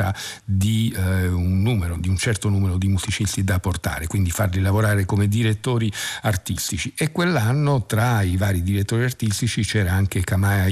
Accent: native